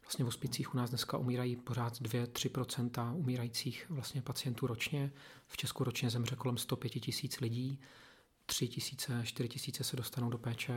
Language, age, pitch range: Czech, 40-59, 120-135 Hz